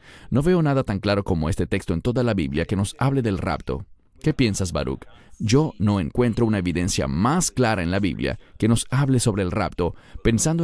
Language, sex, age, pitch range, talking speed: English, male, 40-59, 100-140 Hz, 210 wpm